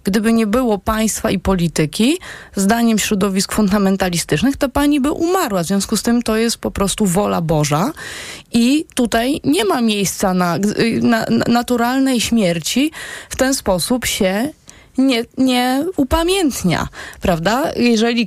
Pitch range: 195-255 Hz